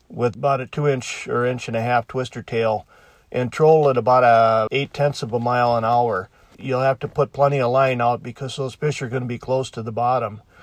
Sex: male